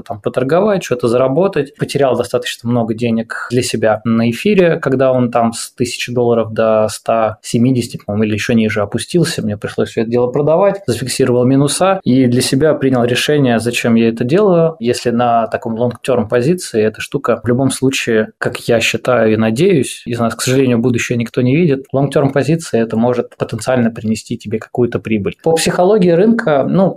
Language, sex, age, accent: Russian, male, 20-39, native